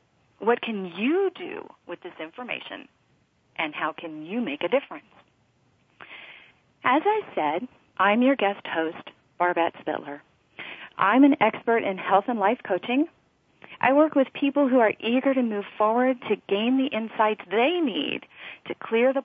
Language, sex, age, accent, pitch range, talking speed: English, female, 40-59, American, 185-265 Hz, 155 wpm